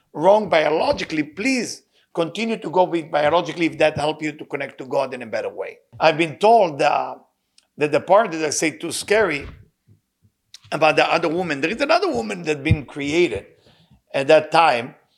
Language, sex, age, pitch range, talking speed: English, male, 50-69, 150-185 Hz, 180 wpm